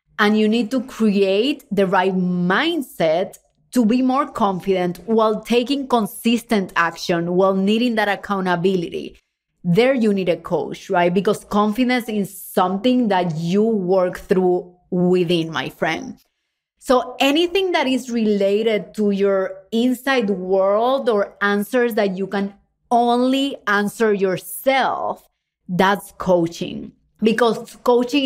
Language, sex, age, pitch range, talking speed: English, female, 30-49, 185-235 Hz, 125 wpm